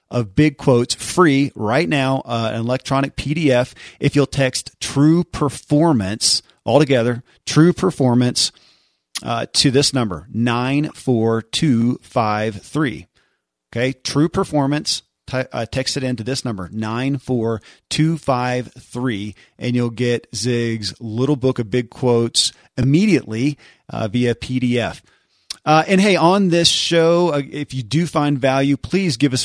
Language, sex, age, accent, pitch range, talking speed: English, male, 40-59, American, 120-145 Hz, 125 wpm